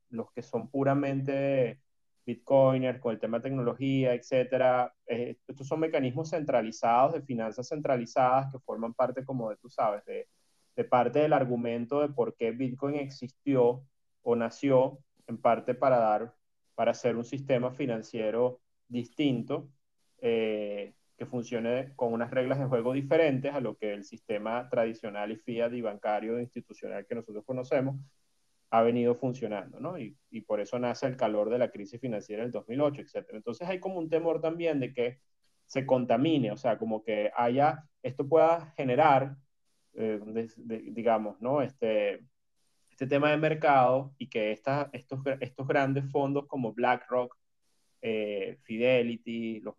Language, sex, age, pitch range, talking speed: Spanish, male, 30-49, 115-135 Hz, 155 wpm